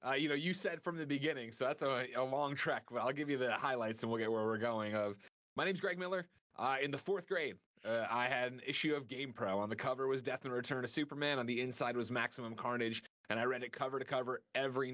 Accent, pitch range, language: American, 115-135 Hz, English